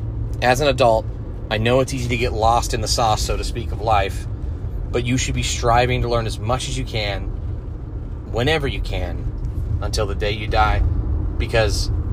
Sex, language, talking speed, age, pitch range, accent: male, English, 195 wpm, 30-49, 90-115 Hz, American